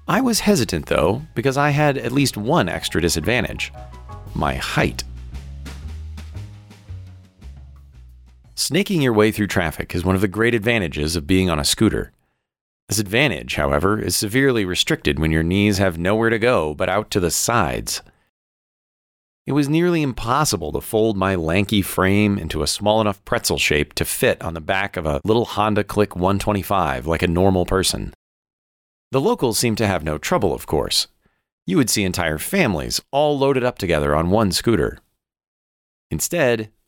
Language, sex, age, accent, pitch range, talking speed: English, male, 40-59, American, 80-115 Hz, 165 wpm